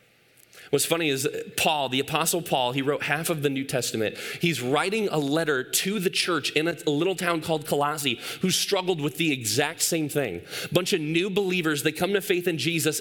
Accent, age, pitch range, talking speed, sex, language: American, 20-39, 155-195 Hz, 210 wpm, male, English